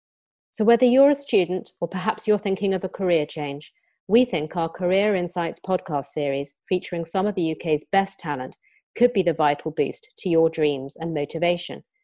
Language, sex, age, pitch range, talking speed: English, female, 40-59, 155-190 Hz, 185 wpm